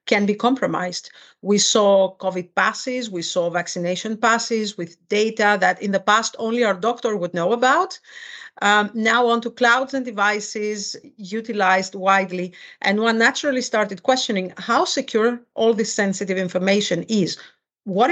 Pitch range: 195-240 Hz